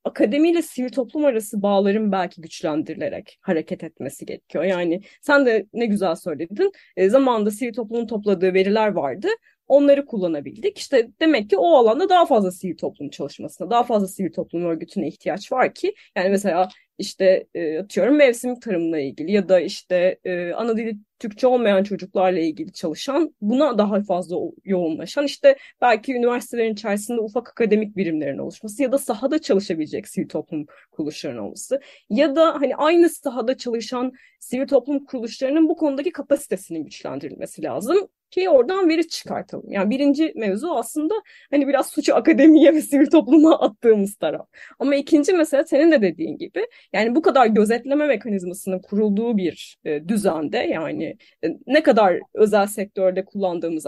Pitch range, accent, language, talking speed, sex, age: 190-285 Hz, native, Turkish, 150 wpm, female, 30-49